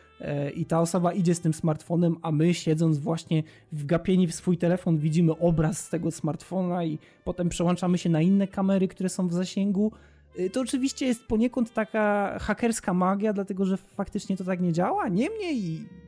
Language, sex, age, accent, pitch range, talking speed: Polish, male, 20-39, native, 160-195 Hz, 175 wpm